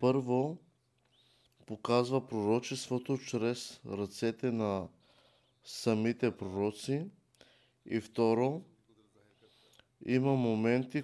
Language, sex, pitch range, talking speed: Bulgarian, male, 115-135 Hz, 65 wpm